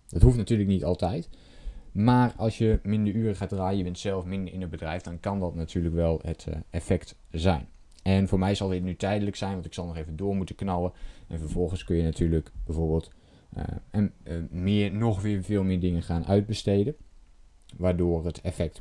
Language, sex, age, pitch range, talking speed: Dutch, male, 20-39, 85-100 Hz, 195 wpm